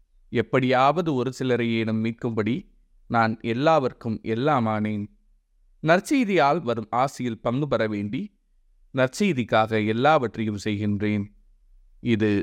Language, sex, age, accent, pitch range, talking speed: Tamil, male, 30-49, native, 105-130 Hz, 85 wpm